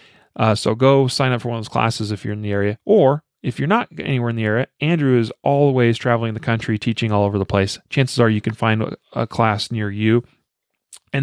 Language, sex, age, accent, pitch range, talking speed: English, male, 40-59, American, 115-140 Hz, 240 wpm